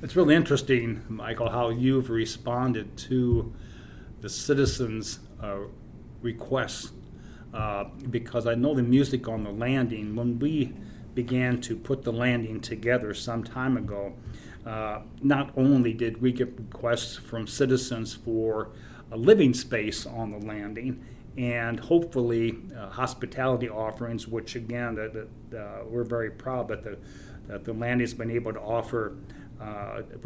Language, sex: English, male